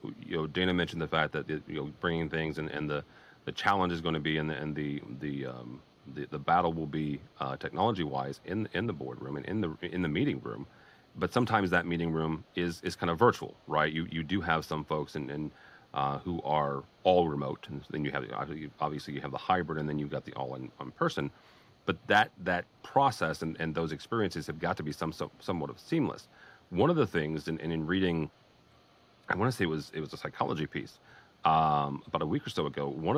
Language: English